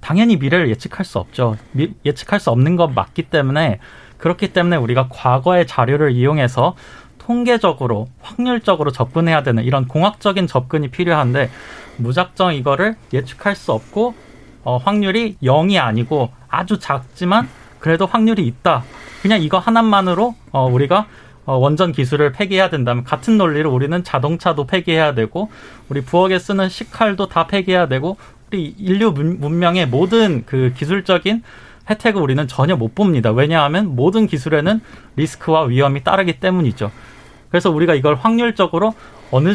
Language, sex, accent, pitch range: Korean, male, native, 130-190 Hz